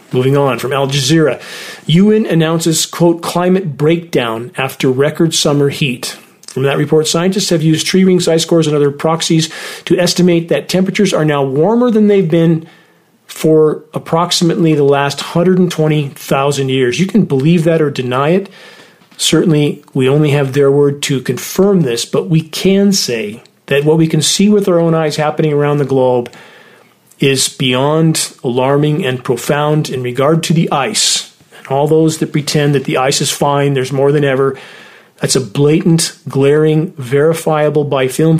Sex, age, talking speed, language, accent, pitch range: male, 40-59, 165 wpm, English, American, 140-165 Hz